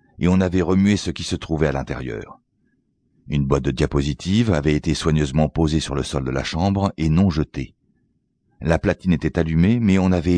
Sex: male